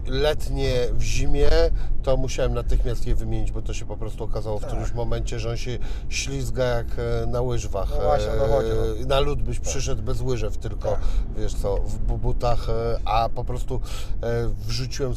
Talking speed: 155 wpm